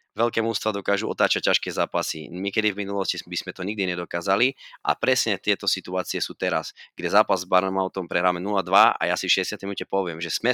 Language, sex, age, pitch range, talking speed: Slovak, male, 20-39, 90-105 Hz, 210 wpm